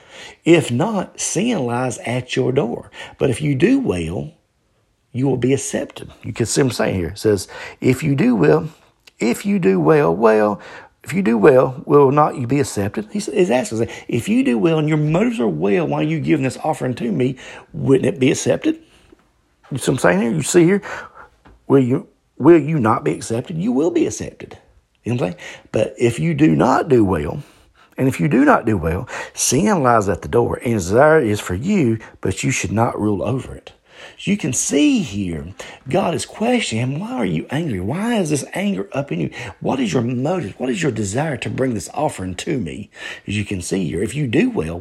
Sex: male